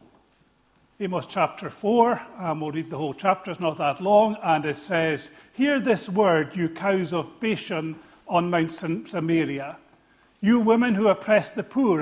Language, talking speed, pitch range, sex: English, 165 wpm, 165-220 Hz, male